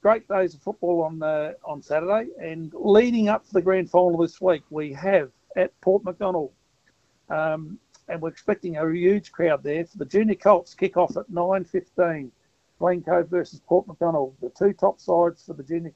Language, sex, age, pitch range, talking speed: English, male, 60-79, 150-185 Hz, 185 wpm